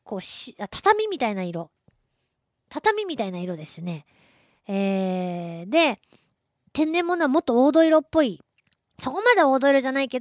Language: Japanese